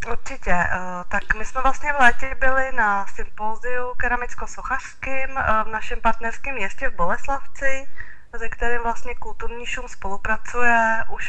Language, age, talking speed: Czech, 20-39, 130 wpm